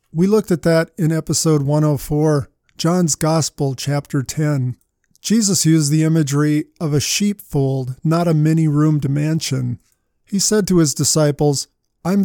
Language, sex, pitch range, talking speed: English, male, 145-170 Hz, 135 wpm